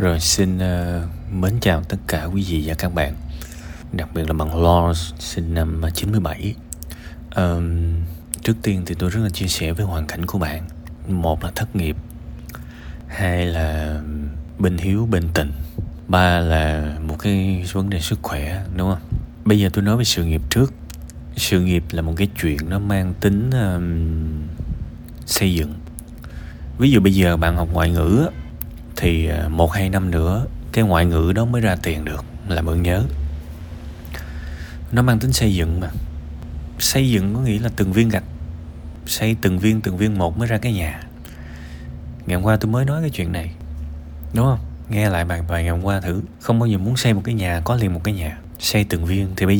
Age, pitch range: 20-39, 80-100 Hz